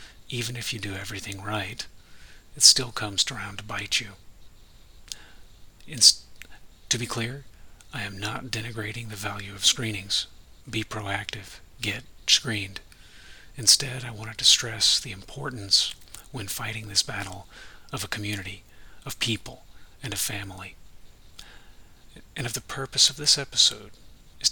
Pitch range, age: 95-115 Hz, 40-59